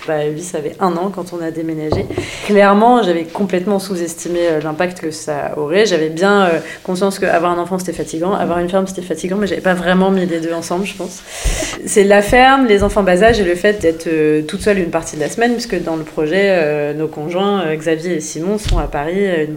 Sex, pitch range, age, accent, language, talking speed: female, 160-200 Hz, 30-49, French, French, 225 wpm